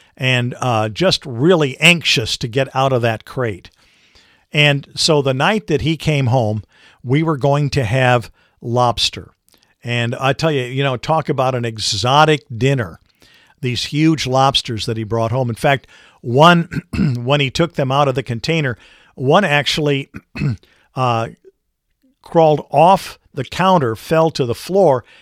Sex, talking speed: male, 155 wpm